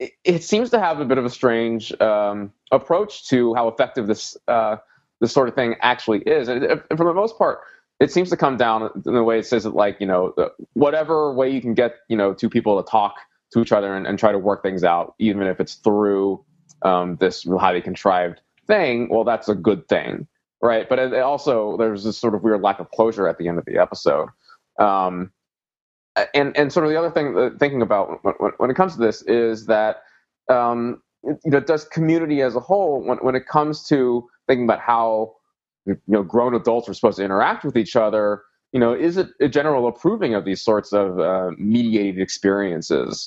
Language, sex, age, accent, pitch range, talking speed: English, male, 20-39, American, 100-145 Hz, 215 wpm